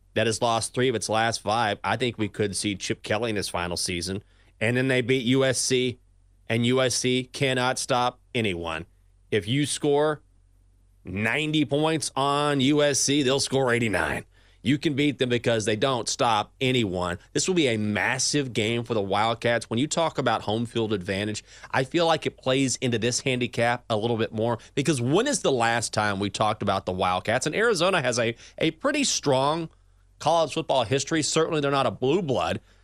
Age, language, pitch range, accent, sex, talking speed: 30-49, English, 105-145 Hz, American, male, 190 wpm